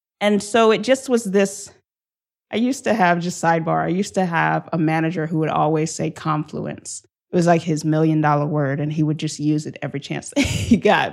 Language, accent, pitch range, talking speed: English, American, 160-205 Hz, 220 wpm